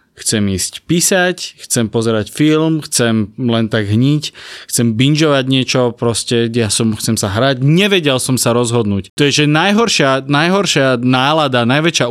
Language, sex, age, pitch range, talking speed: Slovak, male, 20-39, 115-150 Hz, 150 wpm